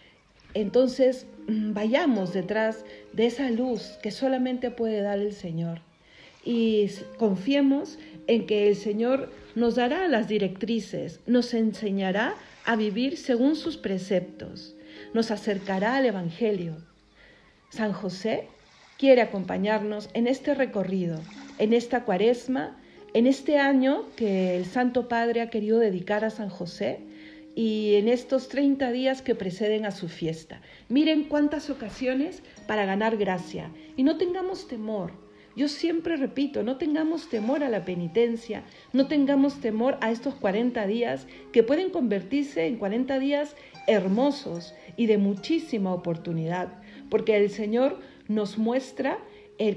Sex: female